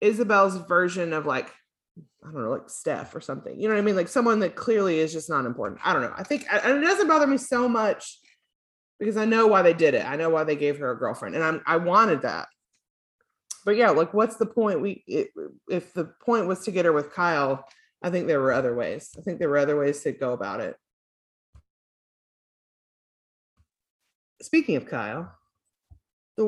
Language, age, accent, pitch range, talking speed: English, 30-49, American, 160-225 Hz, 205 wpm